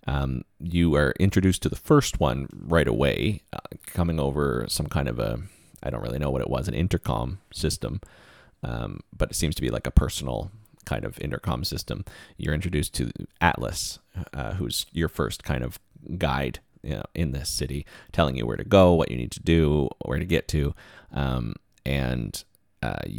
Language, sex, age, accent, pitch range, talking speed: English, male, 30-49, American, 75-95 Hz, 185 wpm